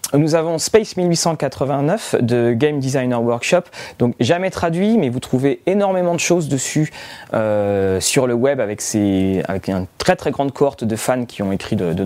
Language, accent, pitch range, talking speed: French, French, 120-170 Hz, 185 wpm